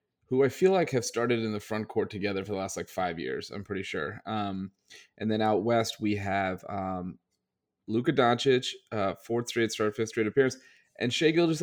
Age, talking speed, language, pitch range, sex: 30-49, 205 wpm, English, 100-115 Hz, male